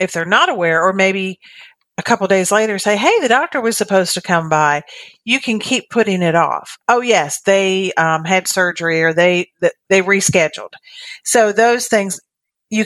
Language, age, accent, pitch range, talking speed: English, 50-69, American, 165-205 Hz, 180 wpm